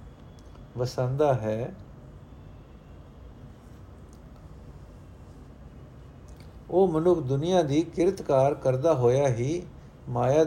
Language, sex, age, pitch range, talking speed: Punjabi, male, 60-79, 130-170 Hz, 65 wpm